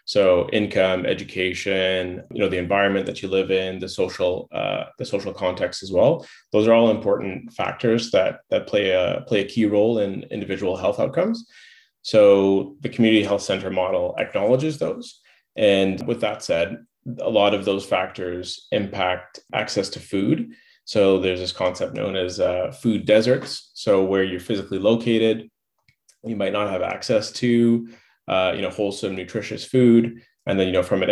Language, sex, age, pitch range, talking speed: English, male, 20-39, 95-120 Hz, 170 wpm